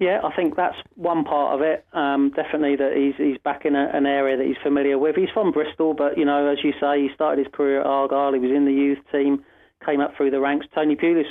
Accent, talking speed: British, 265 wpm